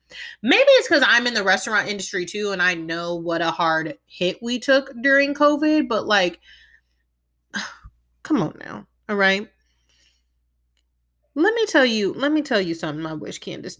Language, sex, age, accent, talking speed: English, female, 30-49, American, 170 wpm